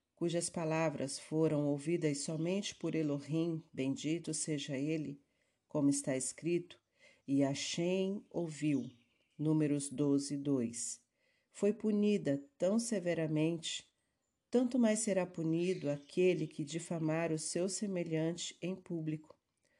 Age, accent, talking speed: 50-69, Brazilian, 105 wpm